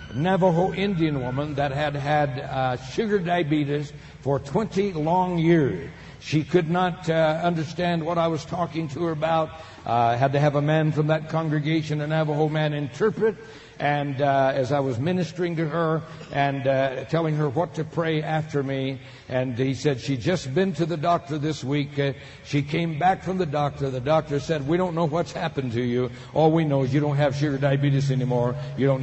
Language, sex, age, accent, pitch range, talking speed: English, male, 60-79, American, 140-185 Hz, 195 wpm